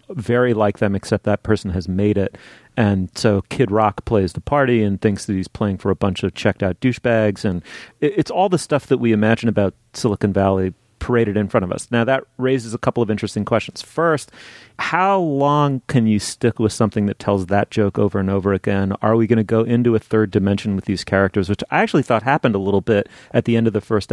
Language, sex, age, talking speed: English, male, 30-49, 235 wpm